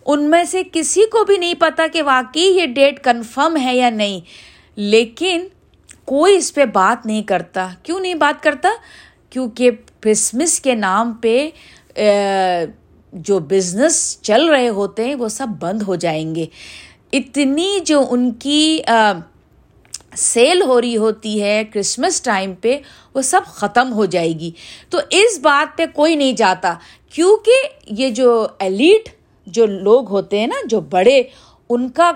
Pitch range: 205-305 Hz